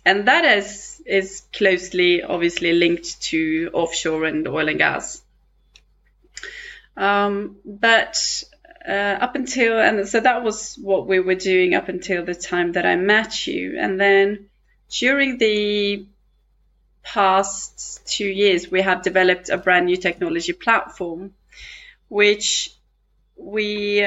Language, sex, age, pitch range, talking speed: English, female, 20-39, 180-280 Hz, 125 wpm